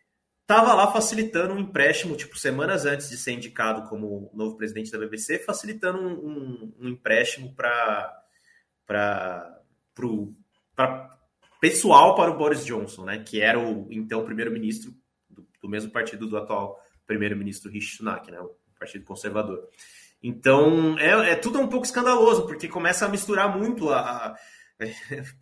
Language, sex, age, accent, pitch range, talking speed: Portuguese, male, 20-39, Brazilian, 105-150 Hz, 155 wpm